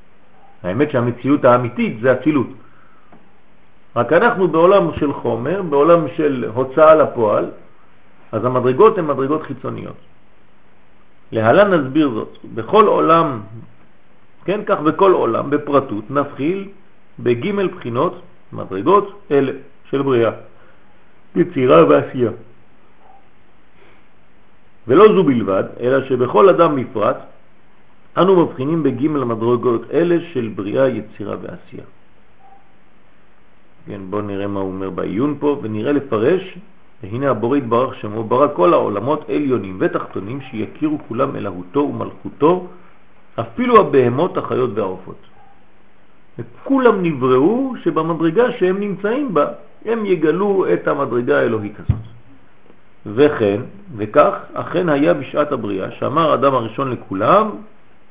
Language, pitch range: French, 115-170 Hz